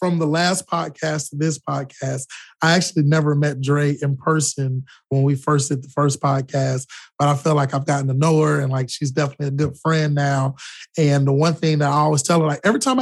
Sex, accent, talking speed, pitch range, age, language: male, American, 230 wpm, 140-160 Hz, 20-39, English